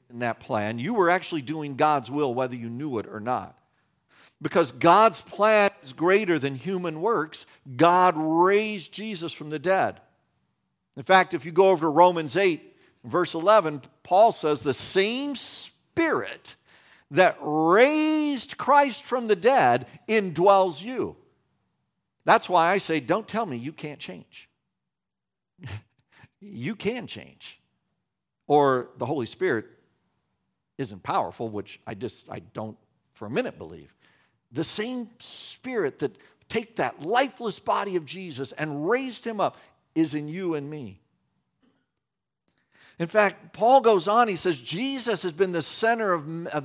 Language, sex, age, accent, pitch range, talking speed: English, male, 50-69, American, 150-220 Hz, 145 wpm